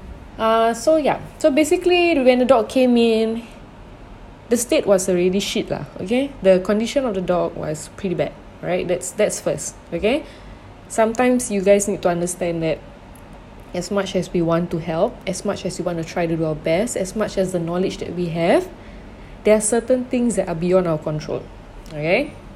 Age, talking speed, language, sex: 20-39, 195 wpm, English, female